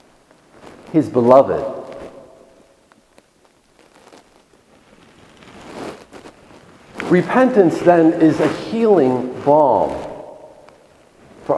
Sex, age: male, 50-69